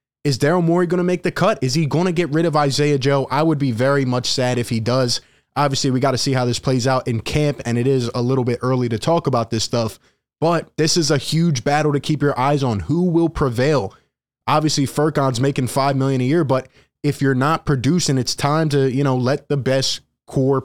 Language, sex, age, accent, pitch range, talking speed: English, male, 20-39, American, 125-145 Hz, 245 wpm